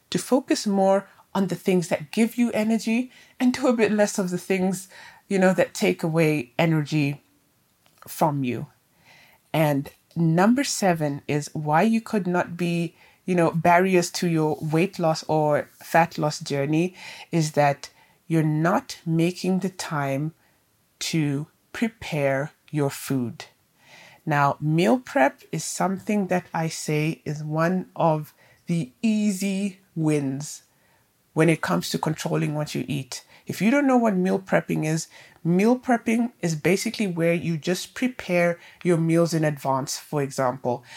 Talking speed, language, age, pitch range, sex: 150 wpm, English, 30-49, 150-195 Hz, female